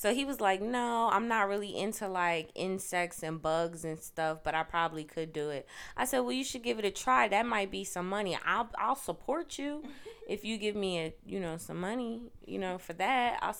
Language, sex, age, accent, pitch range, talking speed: English, female, 20-39, American, 160-210 Hz, 235 wpm